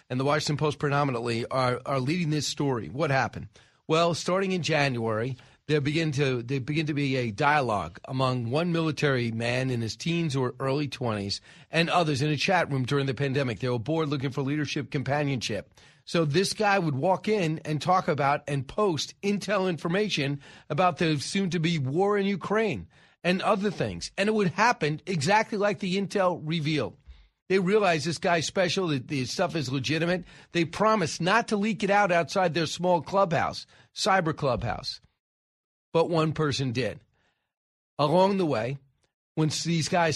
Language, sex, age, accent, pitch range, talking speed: English, male, 40-59, American, 135-180 Hz, 170 wpm